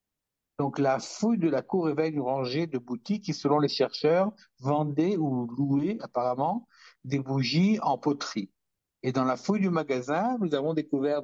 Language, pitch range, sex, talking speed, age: French, 120-155 Hz, male, 170 wpm, 60-79